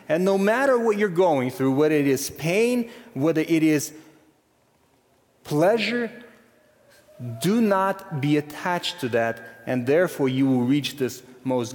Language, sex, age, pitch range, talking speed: English, male, 30-49, 130-185 Hz, 145 wpm